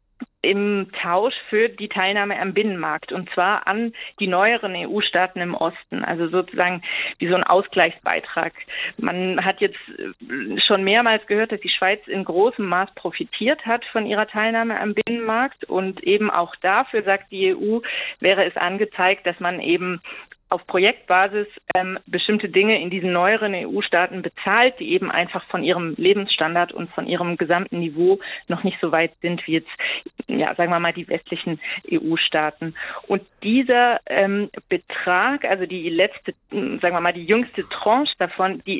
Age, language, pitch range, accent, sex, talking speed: 30-49, German, 180-215 Hz, German, female, 160 wpm